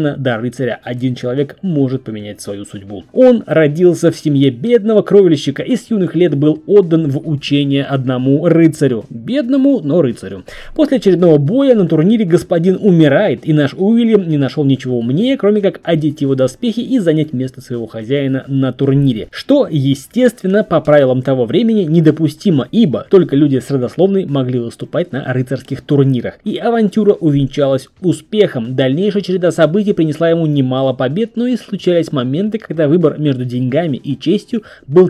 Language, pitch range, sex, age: Russian, 135-190 Hz, male, 20-39